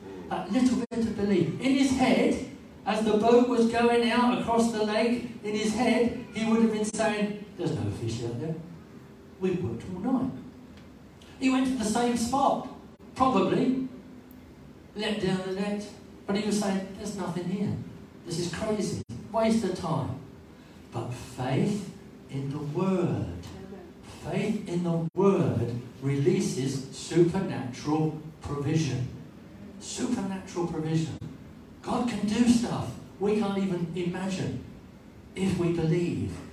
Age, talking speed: 60-79, 135 wpm